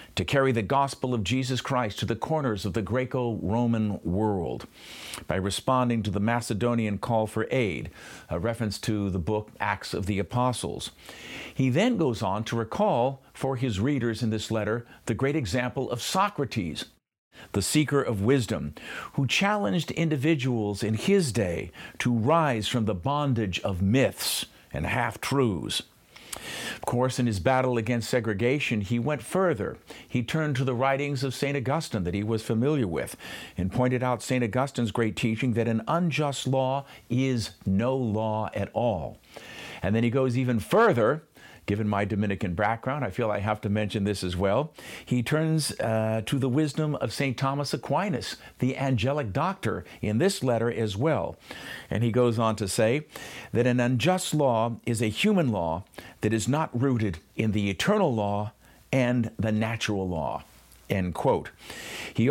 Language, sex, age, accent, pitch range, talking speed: English, male, 50-69, American, 110-135 Hz, 165 wpm